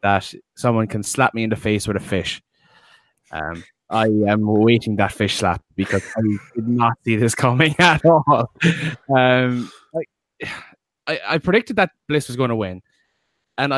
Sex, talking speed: male, 165 wpm